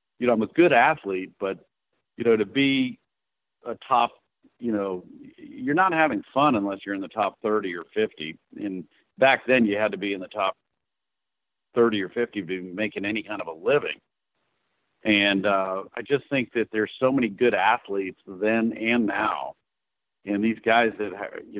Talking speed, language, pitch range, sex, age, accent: 185 wpm, English, 100-130 Hz, male, 50-69, American